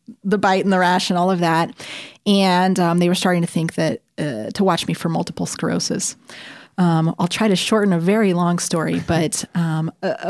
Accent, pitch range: American, 165-190 Hz